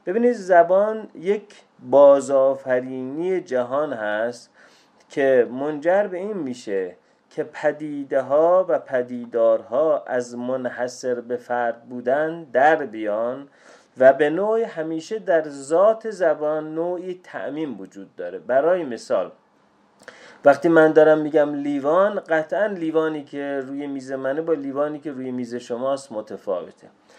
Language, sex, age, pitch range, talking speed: Persian, male, 30-49, 135-180 Hz, 120 wpm